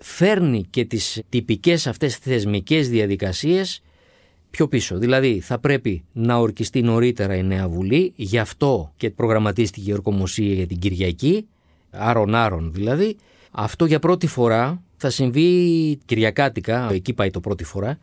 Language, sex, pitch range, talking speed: Greek, male, 110-160 Hz, 135 wpm